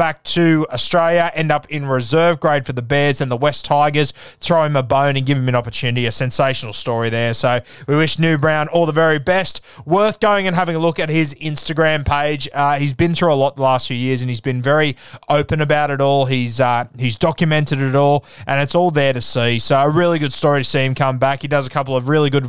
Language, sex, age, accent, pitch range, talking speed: English, male, 20-39, Australian, 130-160 Hz, 250 wpm